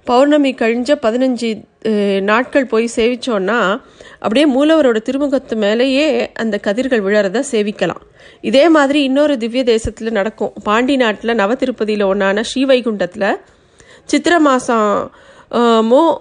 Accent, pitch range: native, 210-260 Hz